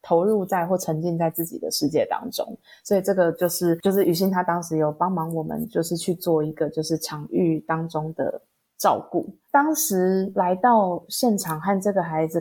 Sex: female